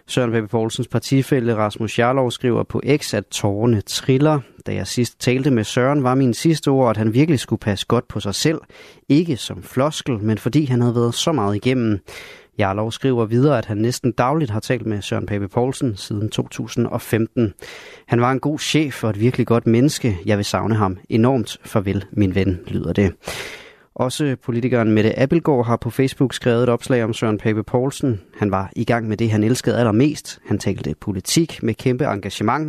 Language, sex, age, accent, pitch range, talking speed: Danish, male, 30-49, native, 105-130 Hz, 195 wpm